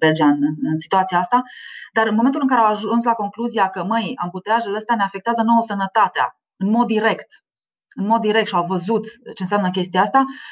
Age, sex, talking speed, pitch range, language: 20-39, female, 200 wpm, 190-245 Hz, Romanian